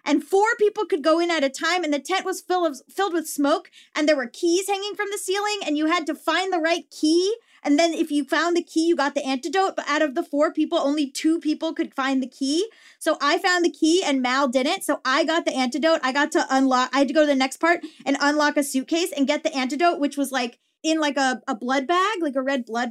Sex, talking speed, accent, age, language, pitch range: female, 270 wpm, American, 20-39, English, 275-340 Hz